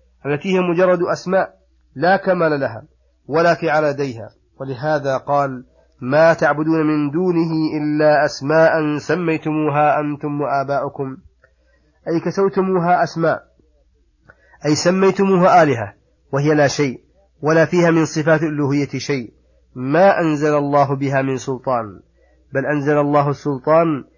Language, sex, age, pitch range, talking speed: Arabic, male, 30-49, 140-165 Hz, 110 wpm